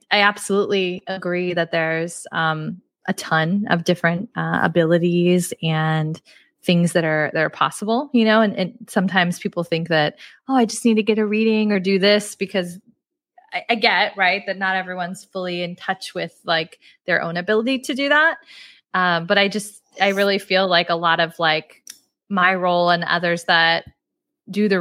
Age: 20-39